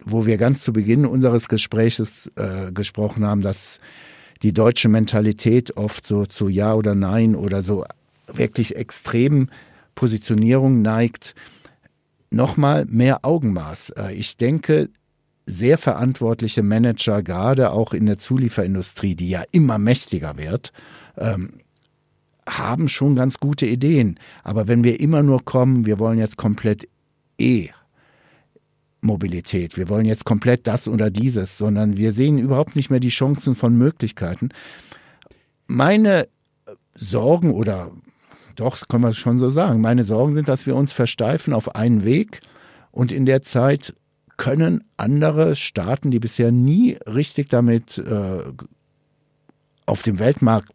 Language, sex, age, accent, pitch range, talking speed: German, male, 60-79, German, 105-130 Hz, 135 wpm